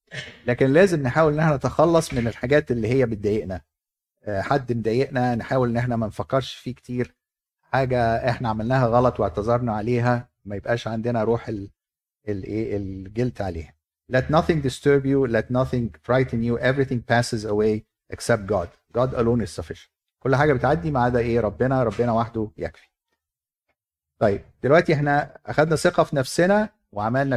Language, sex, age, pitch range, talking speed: Arabic, male, 50-69, 110-140 Hz, 150 wpm